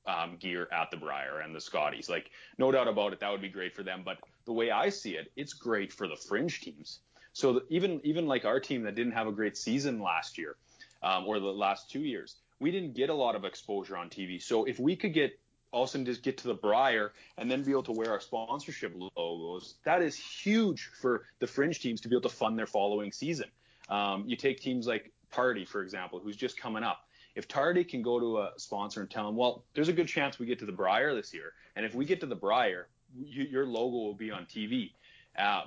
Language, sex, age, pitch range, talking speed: English, male, 30-49, 105-140 Hz, 240 wpm